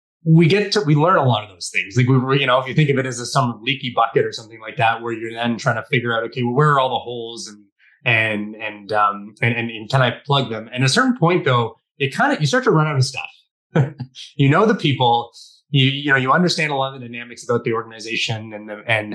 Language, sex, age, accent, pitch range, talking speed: English, male, 20-39, American, 115-150 Hz, 280 wpm